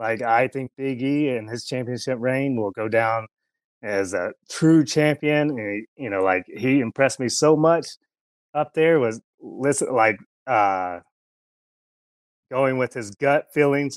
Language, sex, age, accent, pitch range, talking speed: English, male, 30-49, American, 110-145 Hz, 160 wpm